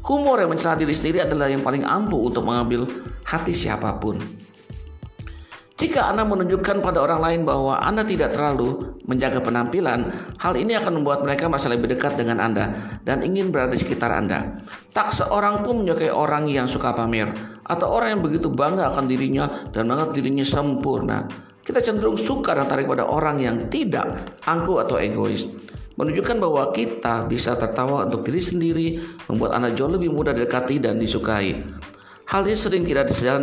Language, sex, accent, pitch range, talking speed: Indonesian, male, native, 115-155 Hz, 165 wpm